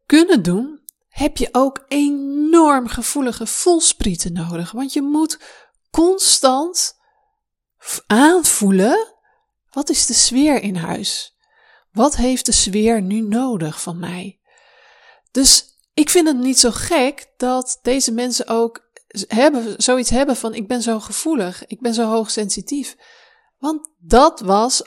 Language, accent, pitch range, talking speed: Dutch, Dutch, 215-285 Hz, 130 wpm